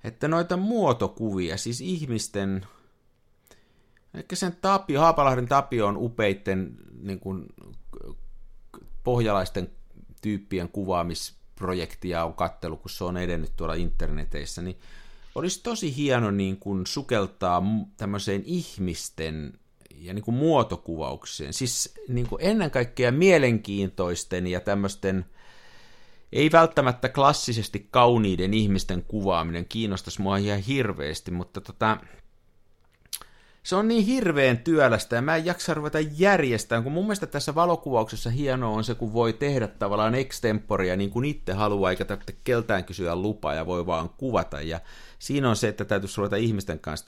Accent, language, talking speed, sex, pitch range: native, Finnish, 130 wpm, male, 90-135 Hz